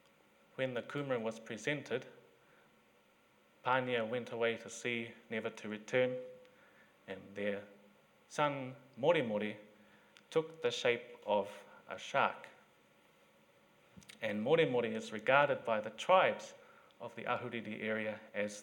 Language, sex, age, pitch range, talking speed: English, male, 30-49, 110-140 Hz, 115 wpm